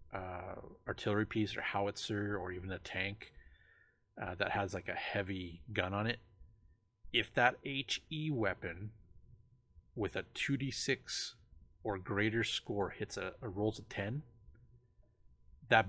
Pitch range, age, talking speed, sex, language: 90-110 Hz, 30-49, 130 wpm, male, English